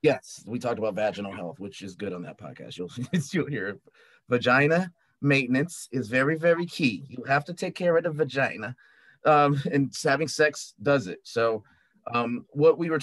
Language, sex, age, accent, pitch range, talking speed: English, male, 30-49, American, 120-155 Hz, 185 wpm